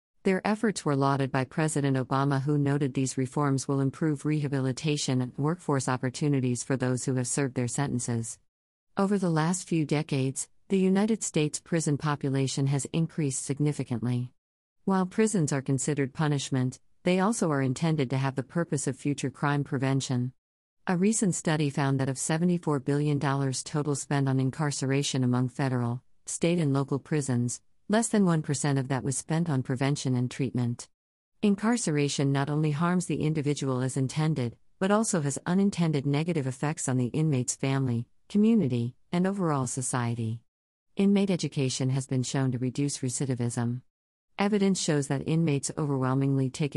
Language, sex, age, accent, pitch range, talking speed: English, female, 50-69, American, 130-155 Hz, 155 wpm